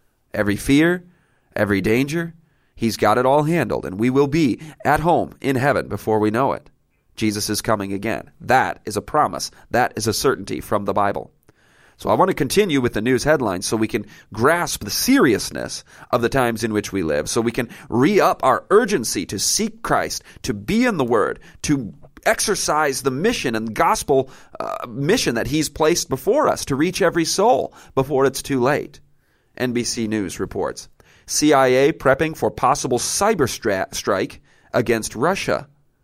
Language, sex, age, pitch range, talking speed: English, male, 40-59, 110-140 Hz, 175 wpm